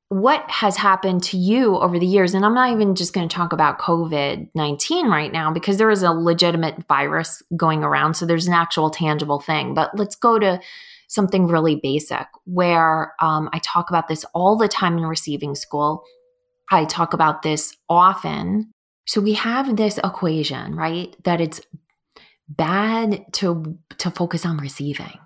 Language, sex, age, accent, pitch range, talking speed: English, female, 20-39, American, 155-200 Hz, 170 wpm